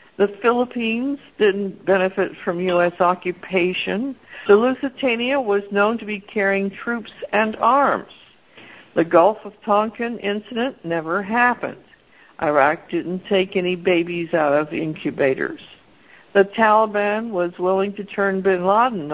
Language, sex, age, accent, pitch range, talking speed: English, female, 60-79, American, 175-205 Hz, 125 wpm